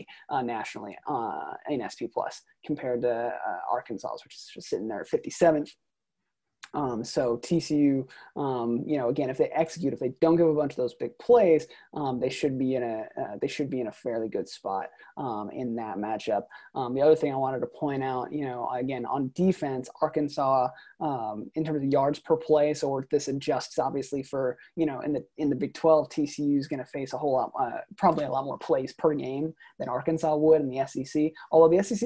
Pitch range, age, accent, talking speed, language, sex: 130-160 Hz, 20-39, American, 220 wpm, English, male